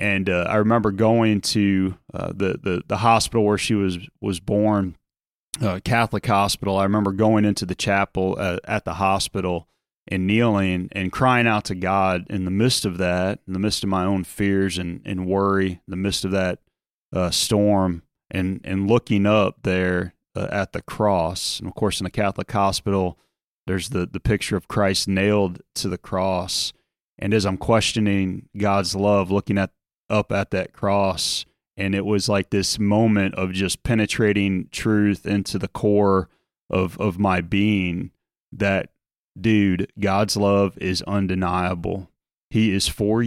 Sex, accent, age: male, American, 30-49